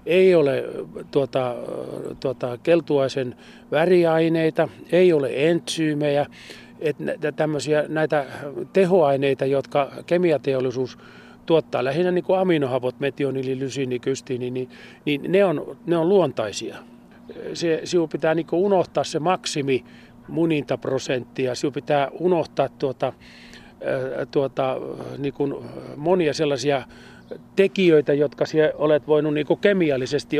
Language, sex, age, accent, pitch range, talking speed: Finnish, male, 40-59, native, 135-165 Hz, 95 wpm